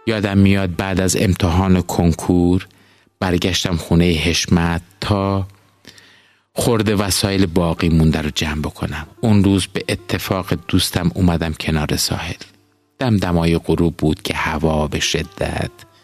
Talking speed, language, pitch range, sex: 125 wpm, Persian, 85-100 Hz, male